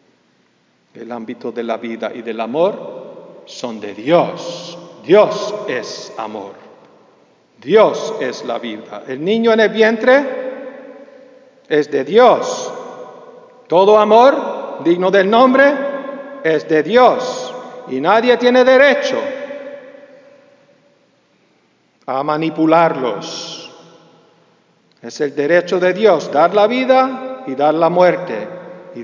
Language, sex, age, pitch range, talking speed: English, male, 50-69, 175-275 Hz, 110 wpm